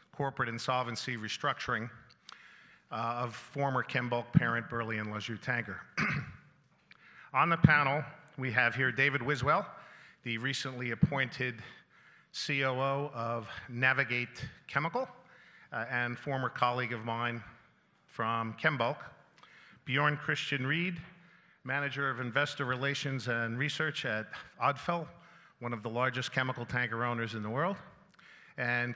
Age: 40-59